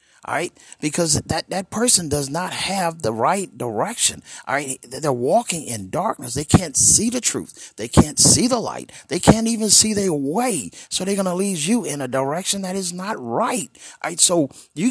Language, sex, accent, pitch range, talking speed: English, male, American, 120-190 Hz, 205 wpm